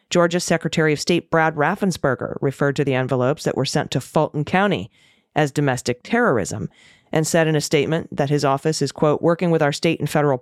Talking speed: 200 wpm